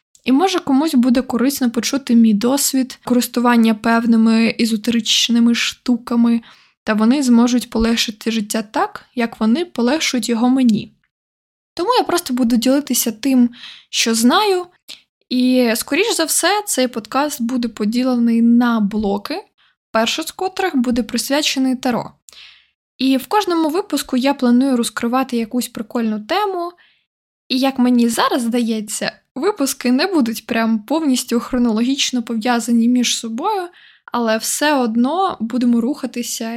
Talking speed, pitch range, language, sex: 125 wpm, 230-270 Hz, Ukrainian, female